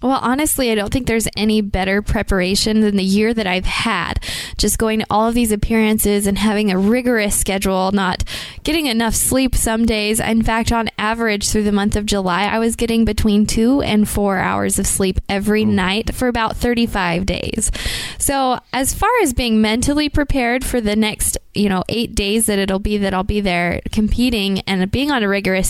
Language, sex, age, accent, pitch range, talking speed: English, female, 20-39, American, 195-230 Hz, 200 wpm